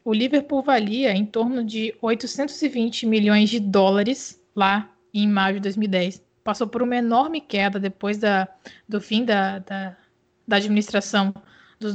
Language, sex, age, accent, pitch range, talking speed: Portuguese, female, 20-39, Brazilian, 205-250 Hz, 135 wpm